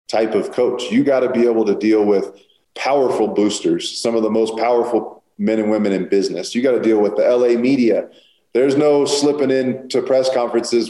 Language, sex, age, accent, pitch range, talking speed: English, male, 40-59, American, 105-125 Hz, 200 wpm